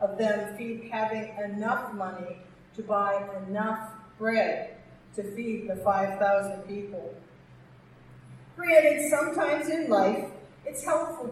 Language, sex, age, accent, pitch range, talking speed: English, female, 50-69, American, 205-270 Hz, 105 wpm